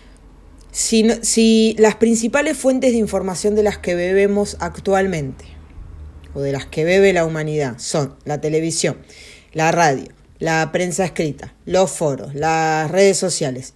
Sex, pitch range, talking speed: female, 140-200 Hz, 140 wpm